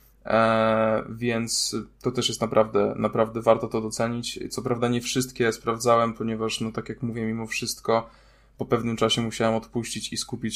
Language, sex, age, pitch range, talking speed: Polish, male, 10-29, 110-120 Hz, 160 wpm